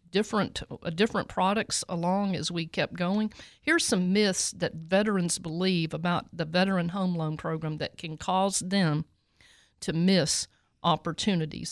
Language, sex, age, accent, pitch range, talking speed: English, female, 50-69, American, 170-215 Hz, 145 wpm